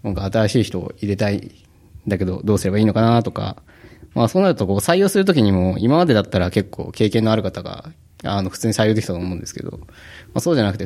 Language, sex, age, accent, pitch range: Japanese, male, 20-39, native, 95-125 Hz